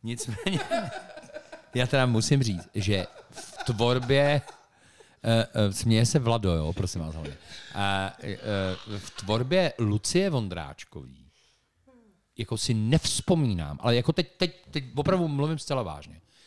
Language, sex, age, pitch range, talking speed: Czech, male, 40-59, 100-150 Hz, 125 wpm